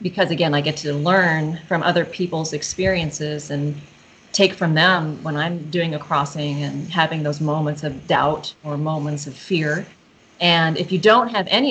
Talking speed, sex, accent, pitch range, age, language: 180 wpm, female, American, 150-190 Hz, 30-49, English